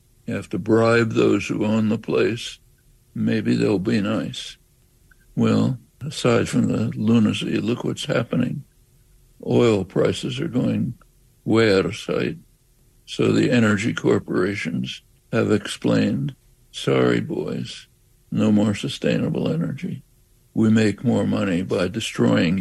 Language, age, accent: English, 60-79, American